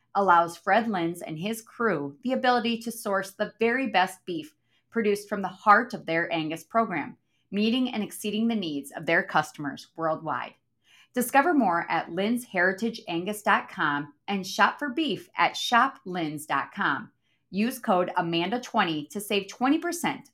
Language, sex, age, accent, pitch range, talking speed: English, female, 30-49, American, 165-220 Hz, 140 wpm